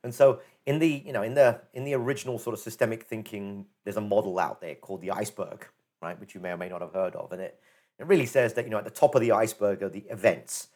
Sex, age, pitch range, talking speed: male, 40-59, 110-135 Hz, 280 wpm